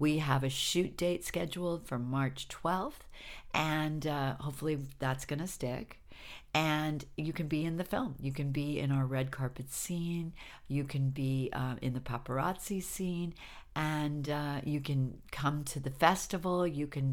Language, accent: English, American